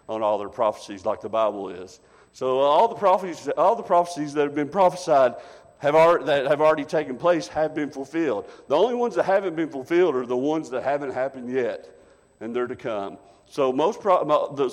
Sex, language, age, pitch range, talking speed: male, English, 50-69, 120-150 Hz, 200 wpm